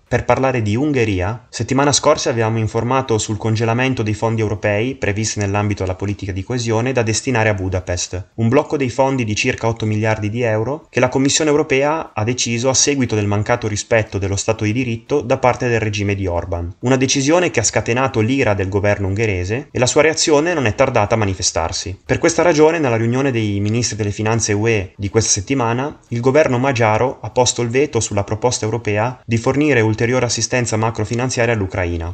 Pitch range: 105-125 Hz